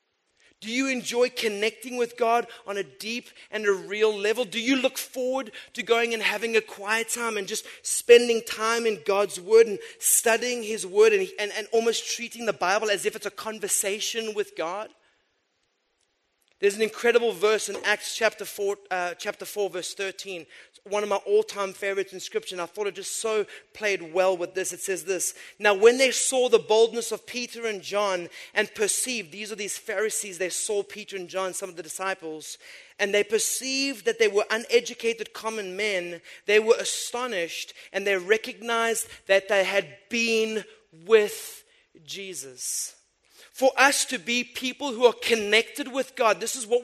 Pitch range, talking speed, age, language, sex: 205-250 Hz, 185 wpm, 30-49, English, male